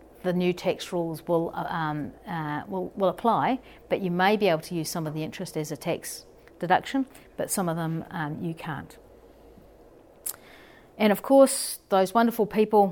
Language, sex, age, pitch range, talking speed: English, female, 40-59, 160-205 Hz, 175 wpm